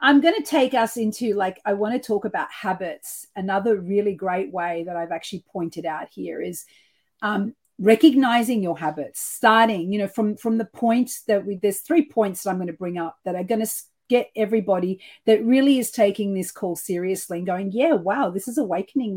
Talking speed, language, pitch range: 205 wpm, English, 195-245 Hz